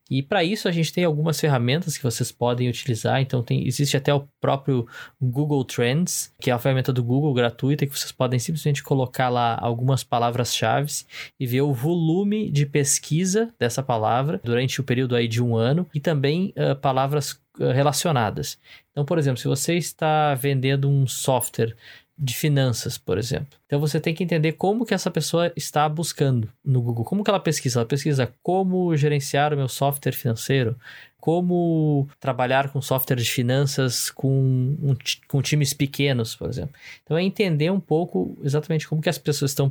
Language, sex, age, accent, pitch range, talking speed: Portuguese, male, 20-39, Brazilian, 130-155 Hz, 175 wpm